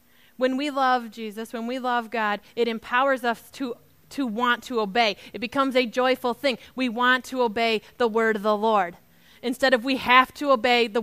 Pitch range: 235-270 Hz